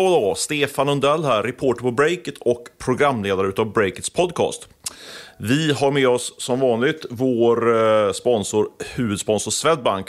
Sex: male